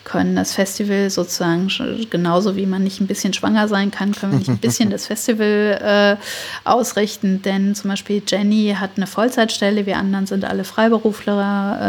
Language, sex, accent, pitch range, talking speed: German, female, German, 185-215 Hz, 175 wpm